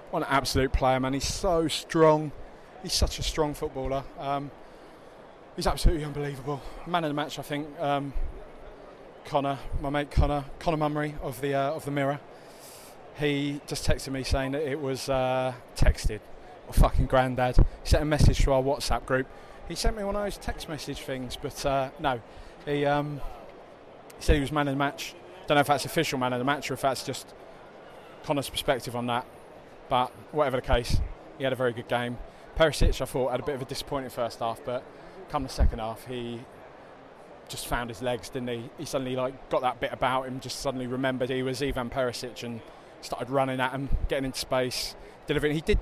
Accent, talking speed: British, 205 wpm